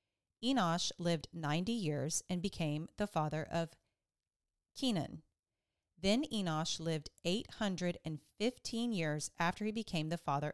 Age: 40-59